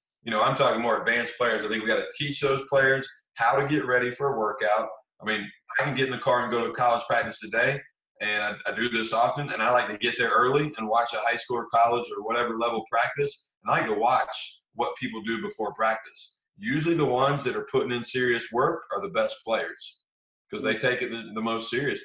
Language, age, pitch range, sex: English, 30-49, 115-135 Hz, male